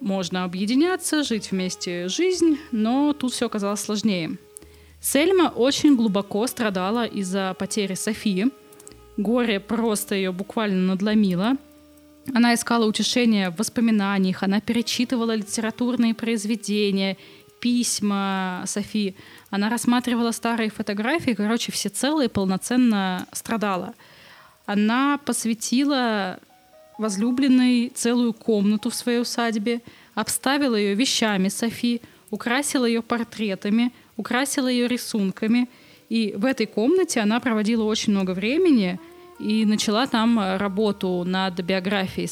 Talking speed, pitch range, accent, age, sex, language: 105 wpm, 200-245 Hz, native, 20-39, female, Russian